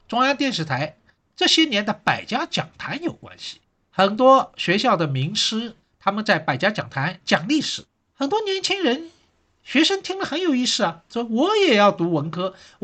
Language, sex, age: Chinese, male, 50-69